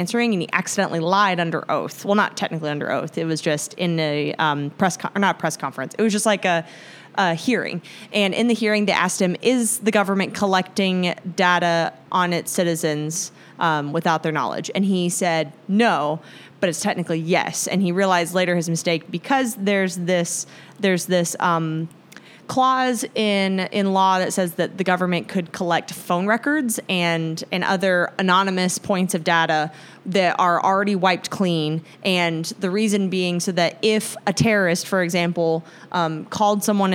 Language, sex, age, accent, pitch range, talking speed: English, female, 30-49, American, 165-195 Hz, 180 wpm